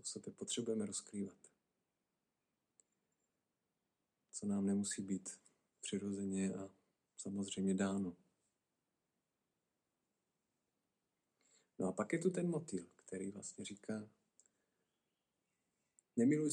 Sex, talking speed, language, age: male, 80 wpm, Czech, 50-69